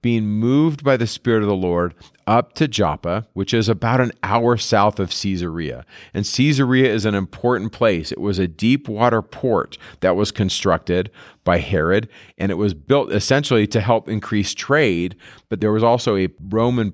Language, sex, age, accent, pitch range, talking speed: English, male, 40-59, American, 95-115 Hz, 180 wpm